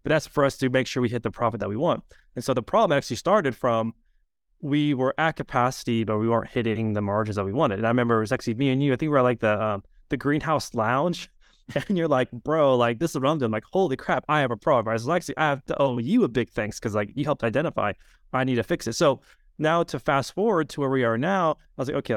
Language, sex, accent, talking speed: English, male, American, 290 wpm